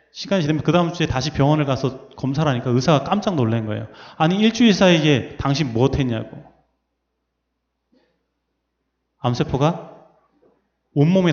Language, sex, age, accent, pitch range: Korean, male, 30-49, native, 135-200 Hz